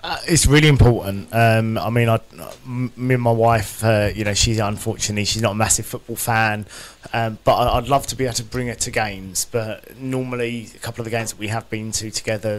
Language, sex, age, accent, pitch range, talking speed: English, male, 20-39, British, 110-130 Hz, 220 wpm